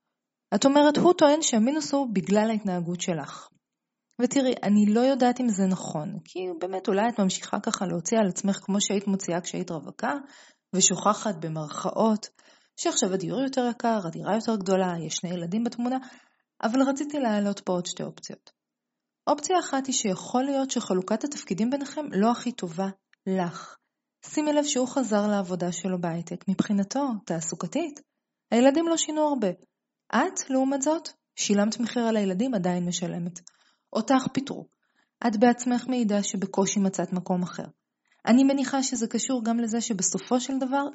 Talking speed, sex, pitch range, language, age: 145 wpm, female, 190-265 Hz, Hebrew, 30-49